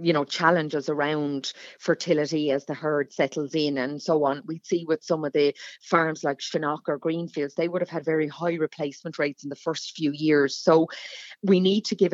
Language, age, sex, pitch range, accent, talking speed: English, 30-49, female, 150-180 Hz, Irish, 210 wpm